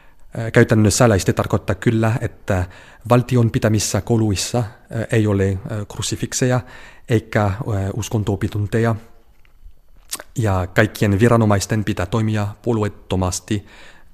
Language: Finnish